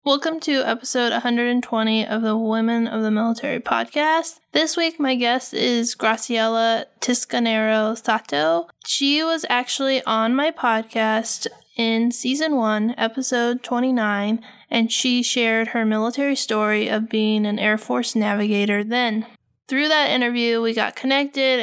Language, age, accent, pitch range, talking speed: English, 10-29, American, 220-250 Hz, 135 wpm